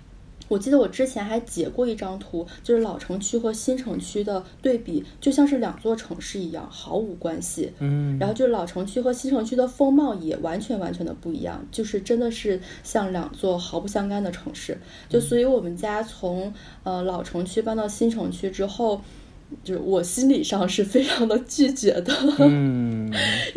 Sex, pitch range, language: female, 185-250 Hz, Chinese